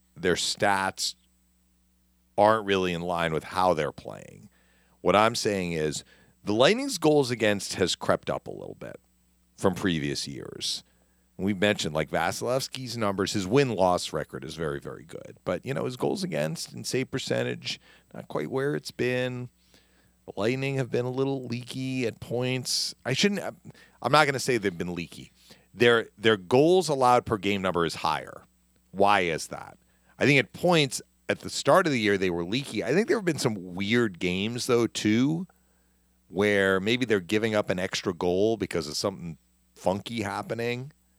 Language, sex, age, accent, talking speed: English, male, 40-59, American, 180 wpm